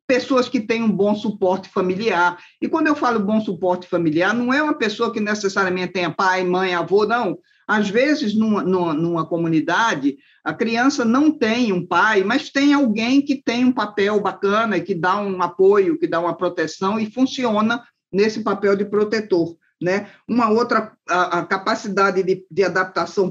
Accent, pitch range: Brazilian, 180-225 Hz